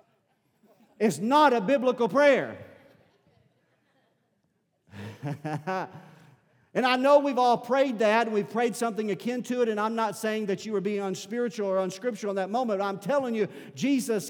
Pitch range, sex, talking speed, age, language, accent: 195-225 Hz, male, 155 wpm, 50-69, English, American